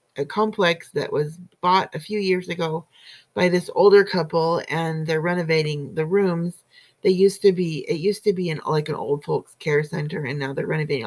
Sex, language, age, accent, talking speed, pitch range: female, English, 30-49, American, 200 wpm, 165-215 Hz